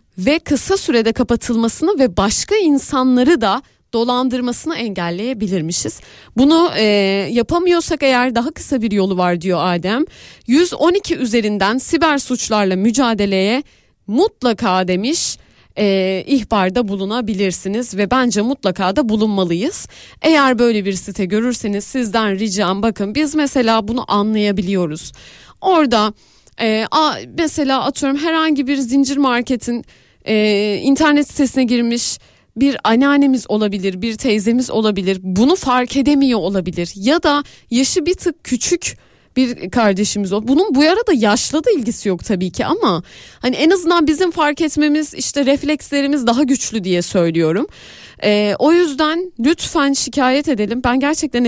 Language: Turkish